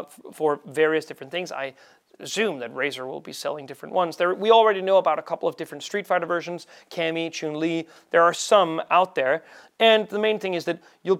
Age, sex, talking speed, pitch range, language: 30-49, male, 215 wpm, 150-190 Hz, English